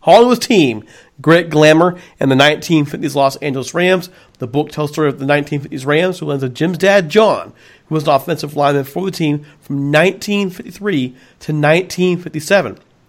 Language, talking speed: English, 175 wpm